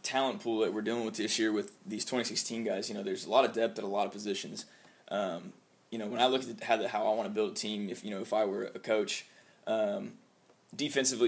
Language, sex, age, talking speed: English, male, 20-39, 265 wpm